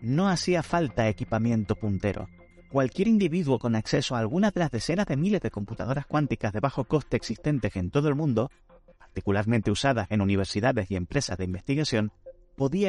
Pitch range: 100-145 Hz